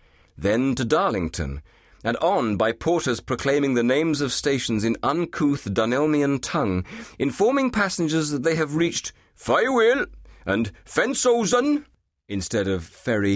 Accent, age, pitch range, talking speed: British, 40-59, 105-145 Hz, 125 wpm